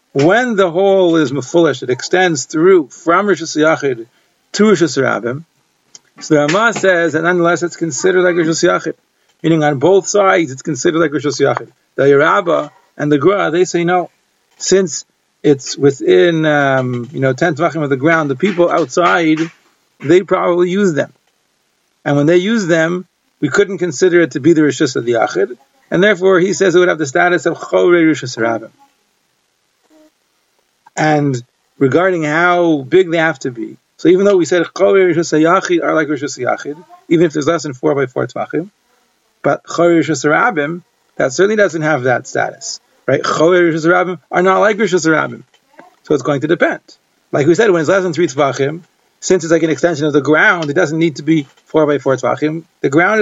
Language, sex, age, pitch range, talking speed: English, male, 50-69, 150-185 Hz, 170 wpm